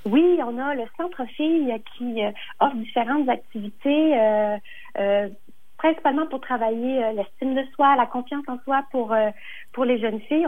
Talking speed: 155 wpm